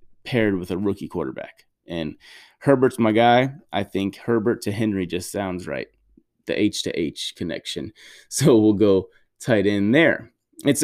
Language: English